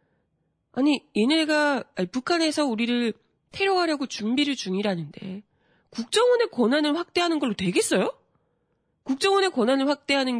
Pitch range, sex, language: 210-315 Hz, female, Korean